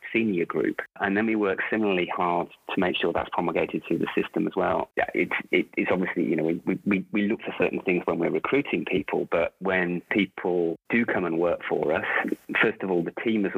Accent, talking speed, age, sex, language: British, 220 wpm, 30-49, male, English